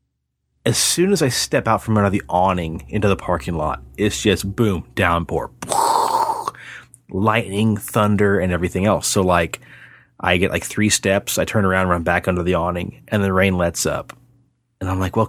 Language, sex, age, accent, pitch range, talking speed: English, male, 30-49, American, 90-125 Hz, 190 wpm